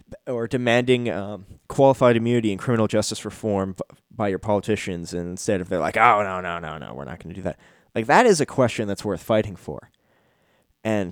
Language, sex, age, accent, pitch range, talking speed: English, male, 20-39, American, 100-120 Hz, 200 wpm